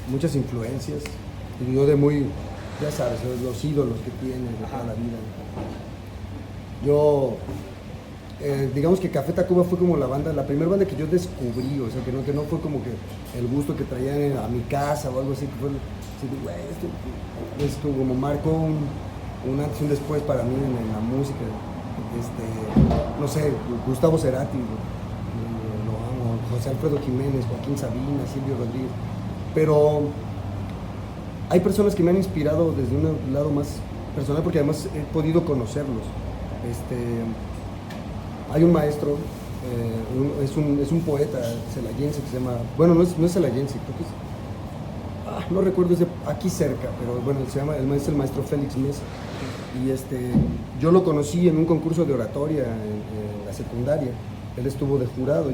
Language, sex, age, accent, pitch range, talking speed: Spanish, male, 30-49, Mexican, 110-145 Hz, 165 wpm